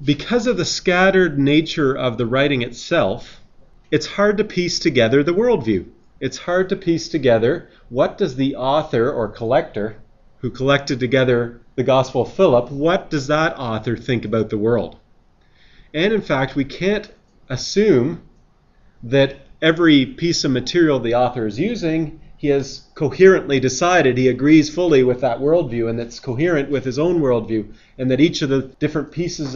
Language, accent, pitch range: English, American, 125-160 Hz